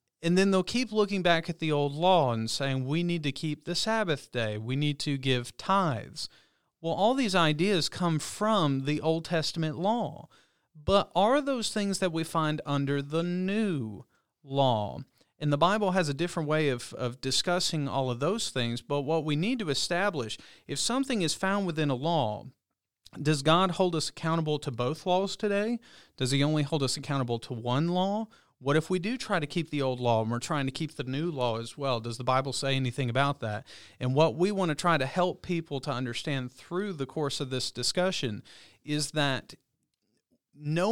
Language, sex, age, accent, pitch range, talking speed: English, male, 40-59, American, 135-180 Hz, 200 wpm